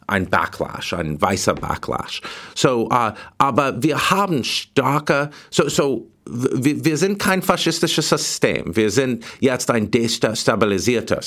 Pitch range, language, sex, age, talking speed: 105-135 Hz, German, male, 50-69, 115 wpm